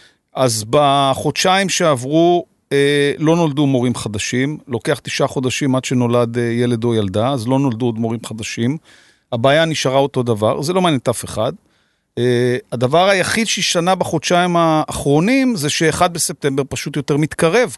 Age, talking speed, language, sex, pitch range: 40-59, 145 wpm, Hebrew, male, 135-185 Hz